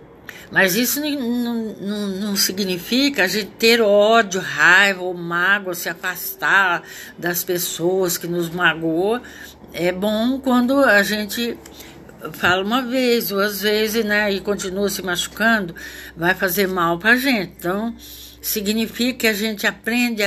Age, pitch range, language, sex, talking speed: 60-79, 180-225 Hz, Portuguese, female, 140 wpm